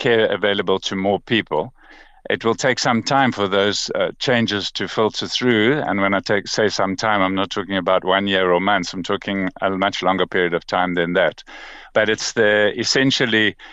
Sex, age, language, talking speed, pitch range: male, 50-69, English, 200 wpm, 100-130 Hz